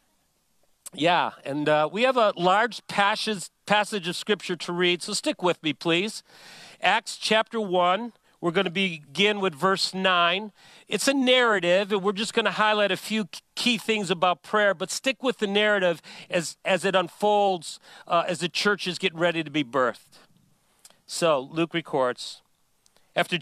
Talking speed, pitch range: 170 wpm, 175-225 Hz